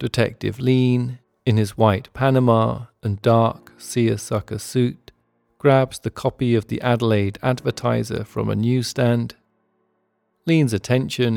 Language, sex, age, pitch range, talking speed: English, male, 40-59, 110-125 Hz, 115 wpm